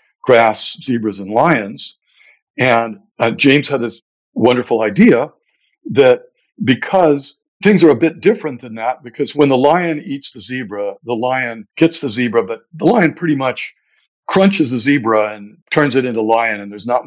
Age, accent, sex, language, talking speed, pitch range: 60-79, American, male, English, 170 wpm, 115-150 Hz